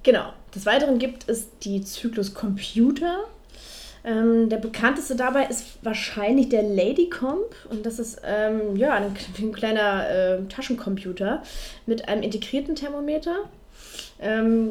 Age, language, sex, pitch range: 20-39, German, female, 200-255 Hz